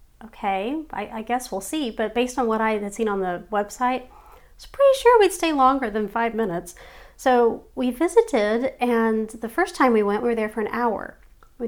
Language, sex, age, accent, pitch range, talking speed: English, female, 40-59, American, 200-245 Hz, 215 wpm